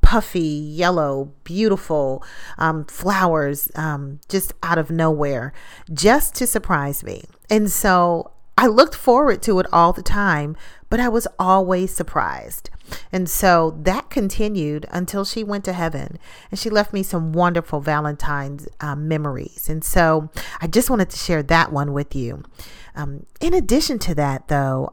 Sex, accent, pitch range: female, American, 145-195 Hz